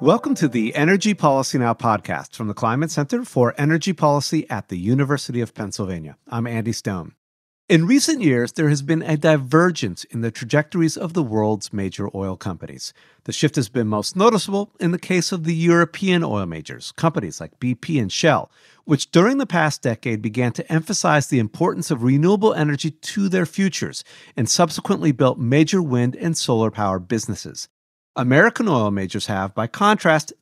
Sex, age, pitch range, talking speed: male, 50-69, 115-170 Hz, 175 wpm